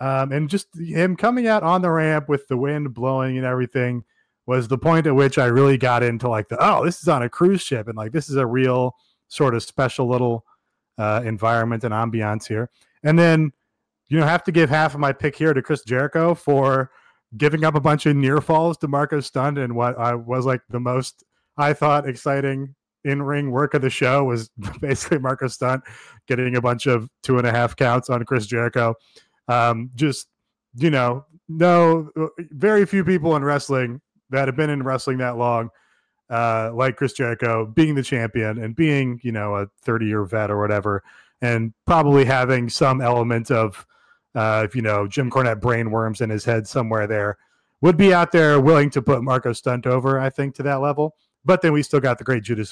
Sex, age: male, 20-39